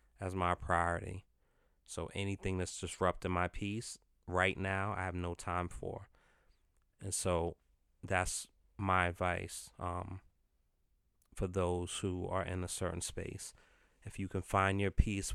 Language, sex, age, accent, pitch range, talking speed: English, male, 30-49, American, 85-100 Hz, 140 wpm